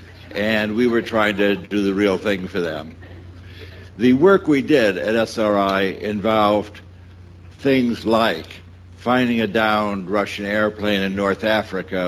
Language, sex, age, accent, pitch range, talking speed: English, male, 70-89, American, 95-115 Hz, 140 wpm